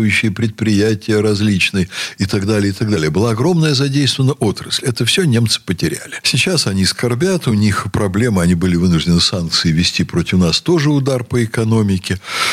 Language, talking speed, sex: Russian, 160 wpm, male